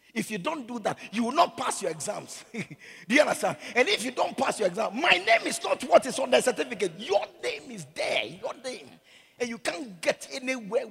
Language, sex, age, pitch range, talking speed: English, male, 50-69, 225-315 Hz, 225 wpm